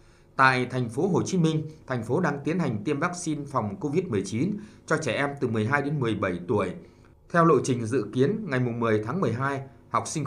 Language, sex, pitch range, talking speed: Vietnamese, male, 110-155 Hz, 200 wpm